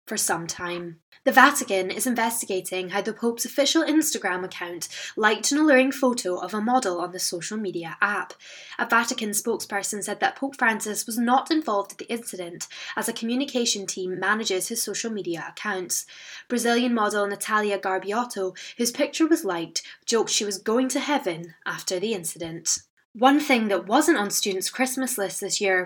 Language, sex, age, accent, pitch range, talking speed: English, female, 10-29, British, 185-245 Hz, 170 wpm